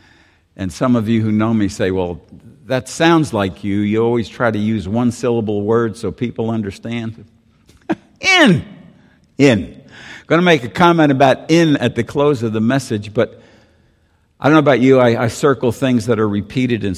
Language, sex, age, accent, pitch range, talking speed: English, male, 60-79, American, 100-130 Hz, 185 wpm